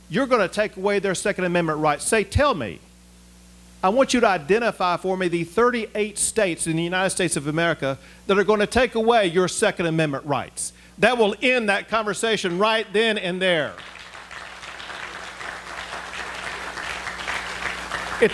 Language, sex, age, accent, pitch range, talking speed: English, male, 50-69, American, 130-205 Hz, 150 wpm